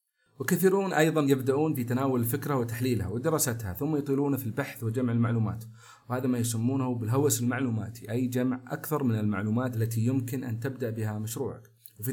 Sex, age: male, 40-59